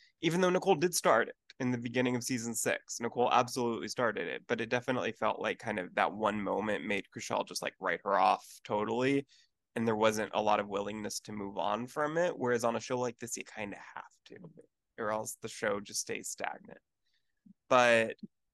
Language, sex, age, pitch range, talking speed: English, male, 20-39, 115-150 Hz, 210 wpm